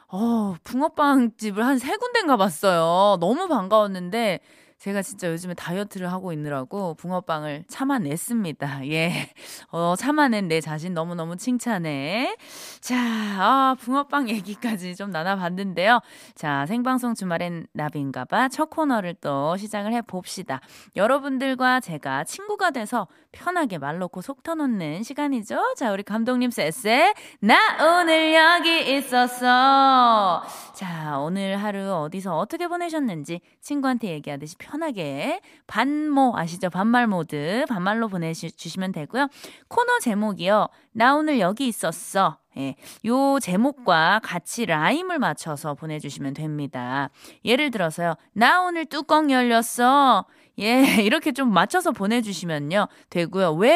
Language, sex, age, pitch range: Korean, female, 20-39, 175-275 Hz